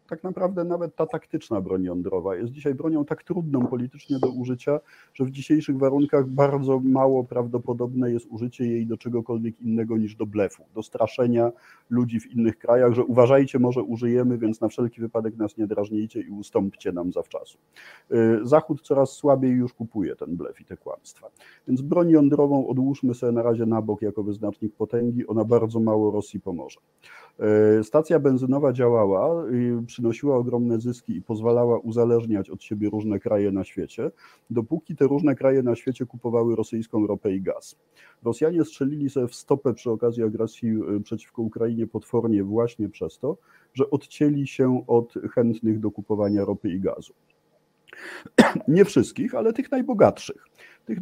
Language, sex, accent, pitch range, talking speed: Polish, male, native, 110-135 Hz, 160 wpm